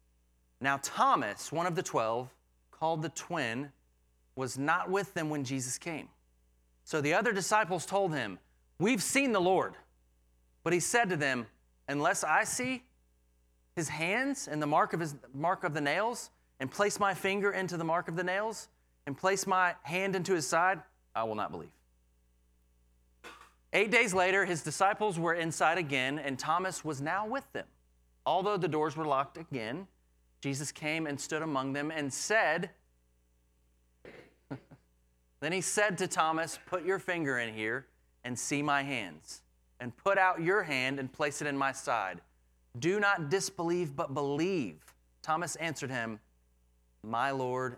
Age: 30-49